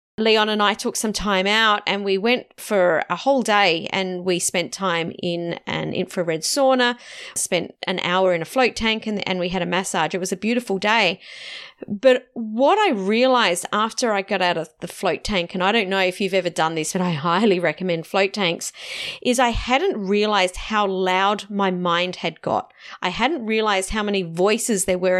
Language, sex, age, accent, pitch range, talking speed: English, female, 40-59, Australian, 180-225 Hz, 200 wpm